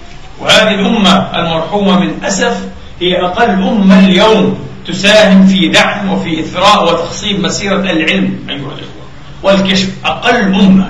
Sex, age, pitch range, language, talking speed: male, 40-59, 170-210 Hz, Arabic, 120 wpm